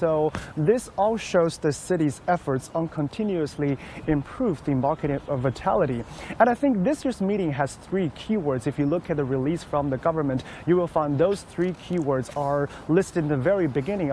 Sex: male